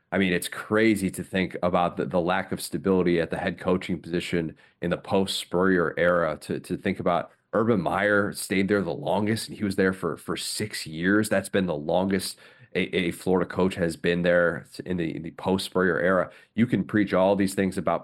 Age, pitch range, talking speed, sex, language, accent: 30-49, 90-105 Hz, 215 wpm, male, English, American